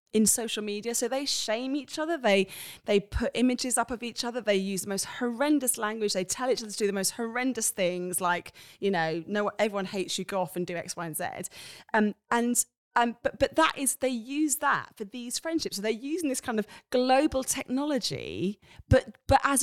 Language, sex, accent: English, female, British